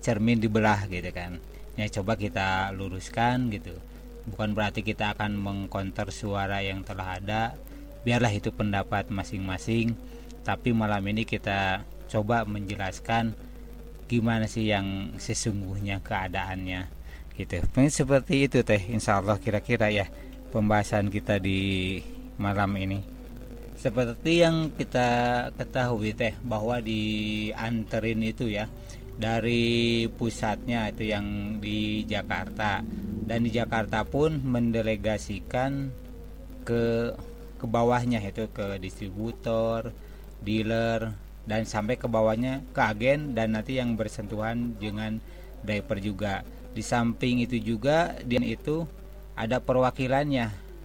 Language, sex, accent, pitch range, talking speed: Indonesian, male, native, 100-120 Hz, 110 wpm